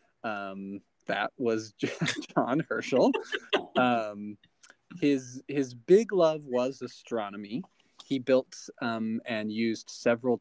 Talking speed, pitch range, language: 105 wpm, 110-135 Hz, English